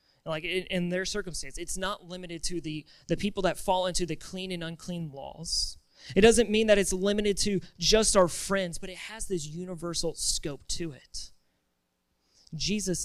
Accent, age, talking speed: American, 30-49, 180 wpm